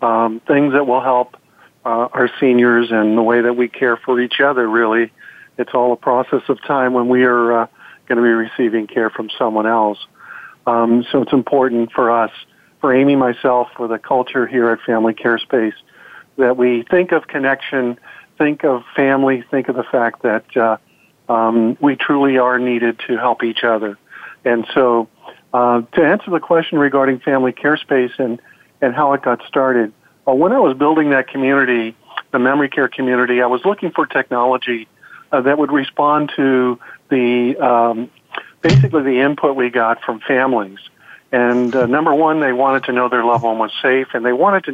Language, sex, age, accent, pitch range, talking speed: English, male, 50-69, American, 120-135 Hz, 190 wpm